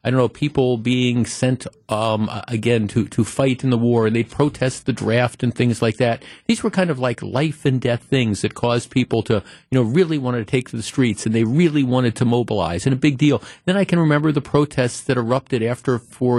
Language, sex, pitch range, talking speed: English, male, 120-150 Hz, 240 wpm